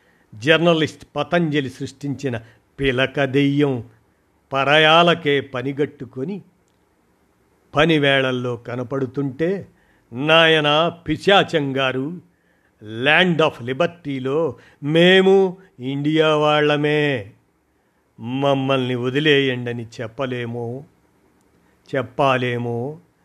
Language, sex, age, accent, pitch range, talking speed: Telugu, male, 50-69, native, 130-160 Hz, 55 wpm